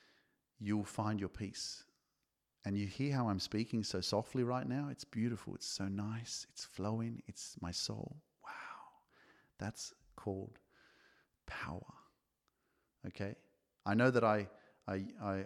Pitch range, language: 100-120 Hz, English